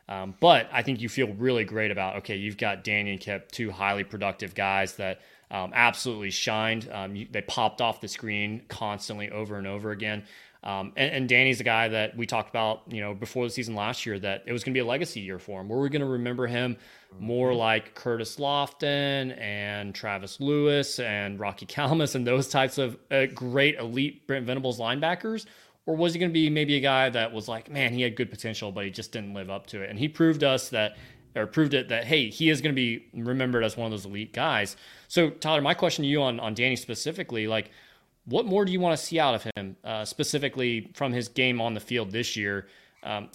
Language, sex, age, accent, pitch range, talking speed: English, male, 20-39, American, 105-135 Hz, 235 wpm